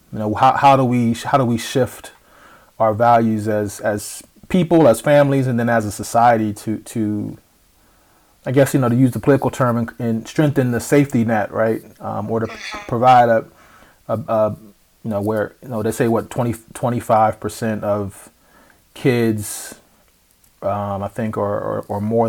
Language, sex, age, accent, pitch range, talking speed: English, male, 30-49, American, 105-120 Hz, 180 wpm